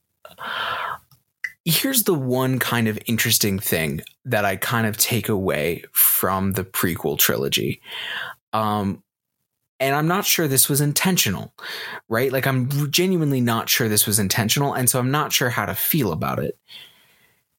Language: English